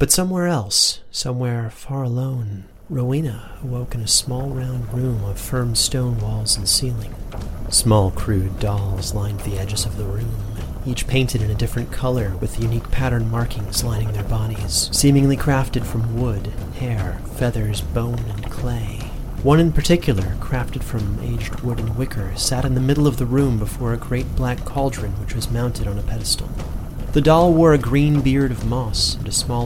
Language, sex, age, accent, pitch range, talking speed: English, male, 30-49, American, 105-125 Hz, 180 wpm